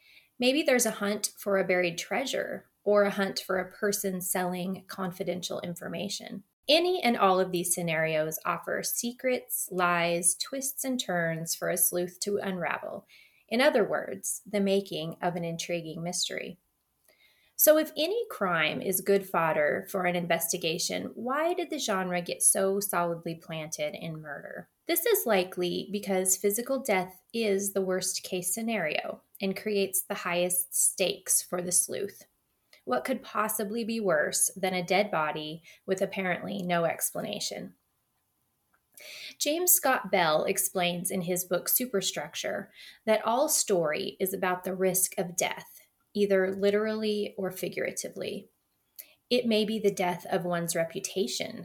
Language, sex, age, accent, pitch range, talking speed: English, female, 20-39, American, 180-215 Hz, 145 wpm